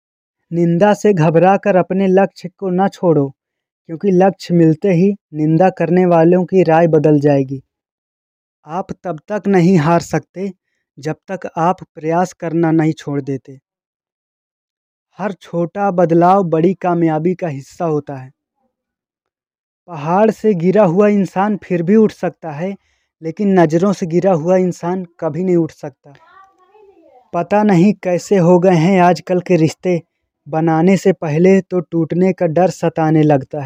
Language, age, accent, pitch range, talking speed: Hindi, 20-39, native, 165-195 Hz, 145 wpm